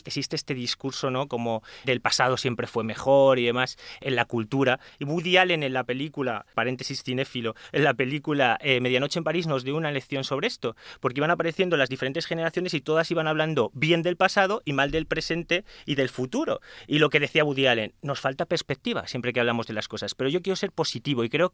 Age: 30-49